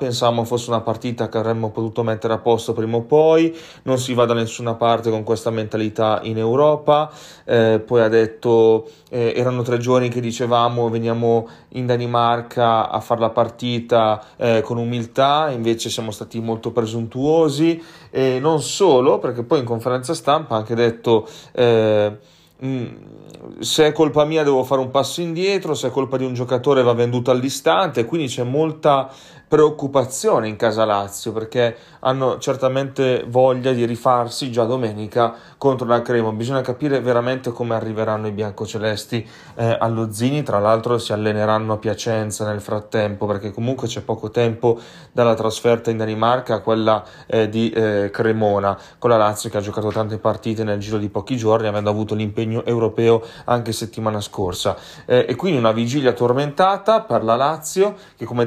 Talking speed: 165 wpm